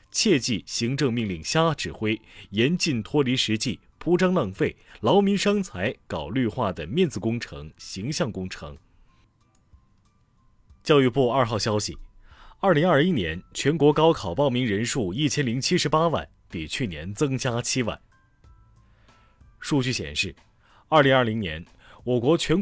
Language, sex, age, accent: Chinese, male, 30-49, native